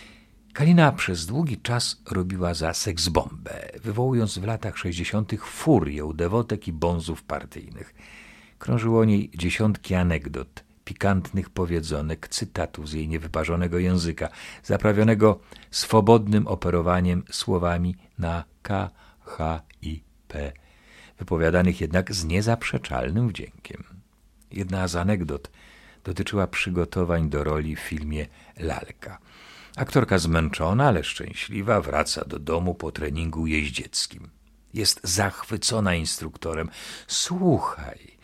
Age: 50-69